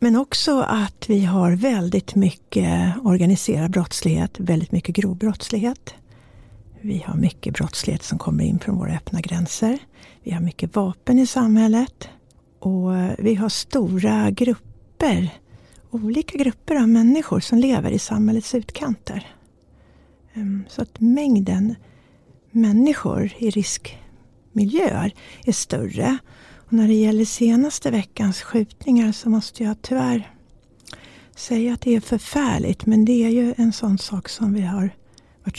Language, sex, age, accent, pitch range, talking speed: Swedish, female, 60-79, native, 195-240 Hz, 130 wpm